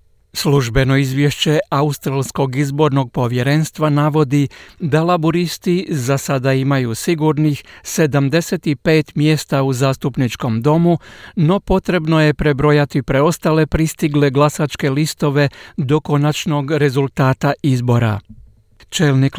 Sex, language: male, Croatian